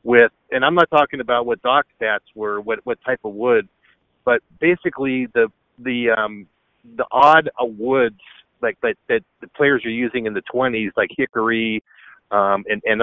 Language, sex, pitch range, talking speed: English, male, 115-150 Hz, 180 wpm